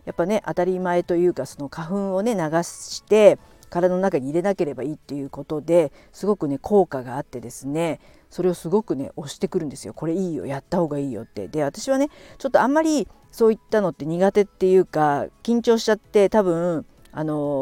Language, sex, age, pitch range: Japanese, female, 50-69, 150-195 Hz